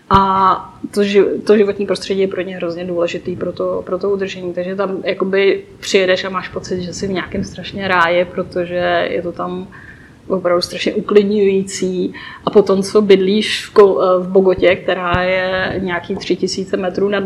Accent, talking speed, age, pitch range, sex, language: native, 155 wpm, 20-39, 180-200 Hz, female, Czech